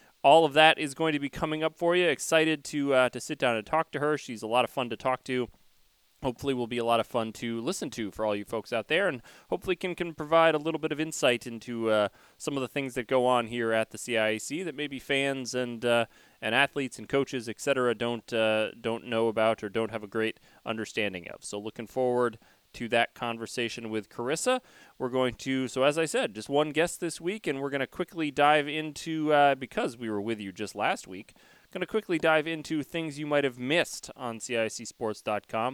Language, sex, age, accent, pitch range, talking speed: English, male, 30-49, American, 115-150 Hz, 230 wpm